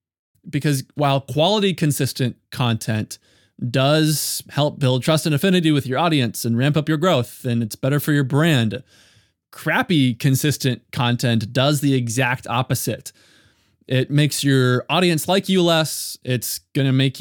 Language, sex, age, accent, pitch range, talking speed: English, male, 20-39, American, 120-150 Hz, 145 wpm